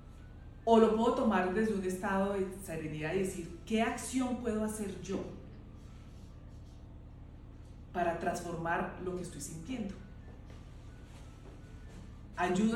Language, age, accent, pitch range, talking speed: English, 30-49, Colombian, 155-200 Hz, 110 wpm